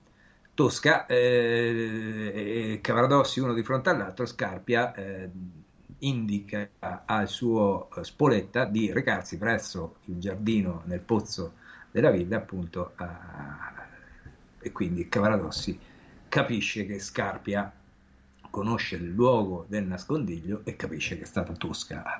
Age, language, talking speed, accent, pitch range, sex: 50-69, Italian, 115 wpm, native, 95-115 Hz, male